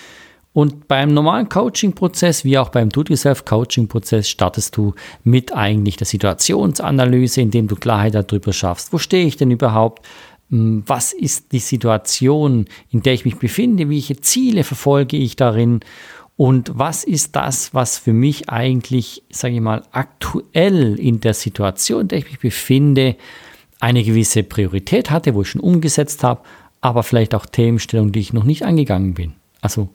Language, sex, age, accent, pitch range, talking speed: German, male, 50-69, German, 110-155 Hz, 155 wpm